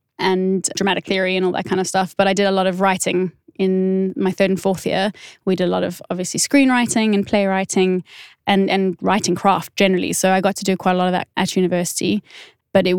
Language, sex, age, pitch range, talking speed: English, female, 20-39, 180-200 Hz, 230 wpm